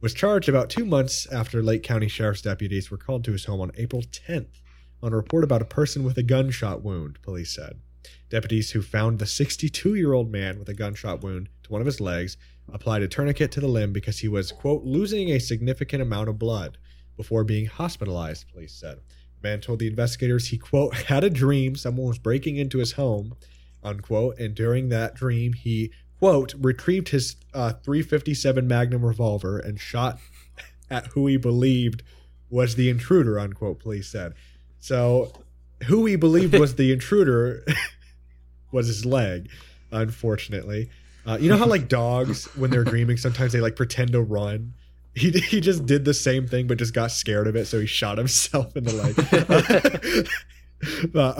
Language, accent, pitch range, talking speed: English, American, 100-130 Hz, 180 wpm